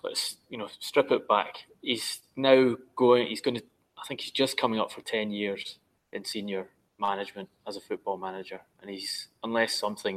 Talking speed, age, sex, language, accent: 190 wpm, 20-39, male, English, British